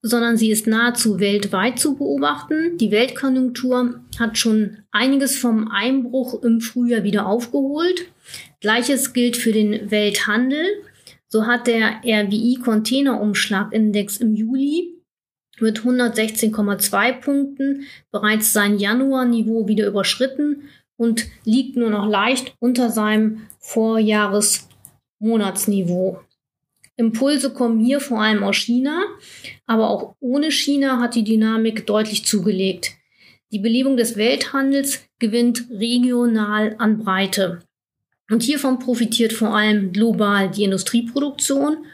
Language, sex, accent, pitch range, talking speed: German, female, German, 215-260 Hz, 110 wpm